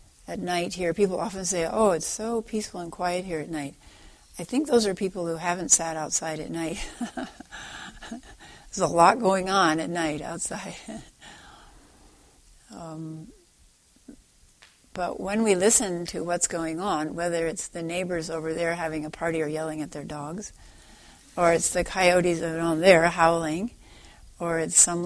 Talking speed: 160 wpm